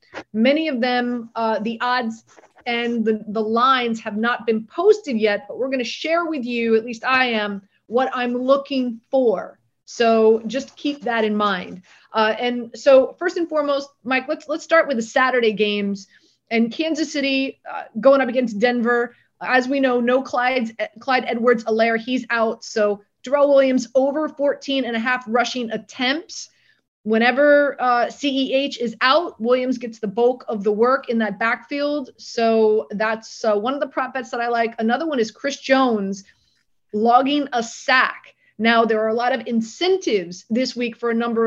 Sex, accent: female, American